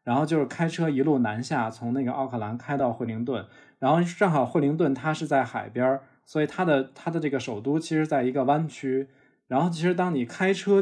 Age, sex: 20-39, male